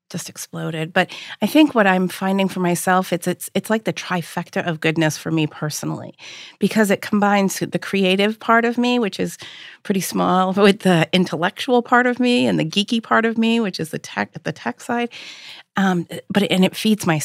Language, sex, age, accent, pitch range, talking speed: English, female, 40-59, American, 170-200 Hz, 210 wpm